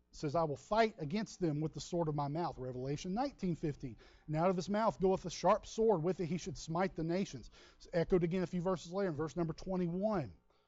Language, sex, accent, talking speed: English, male, American, 230 wpm